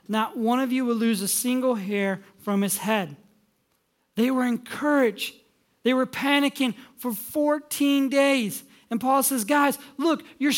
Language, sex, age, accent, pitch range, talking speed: English, male, 40-59, American, 205-265 Hz, 155 wpm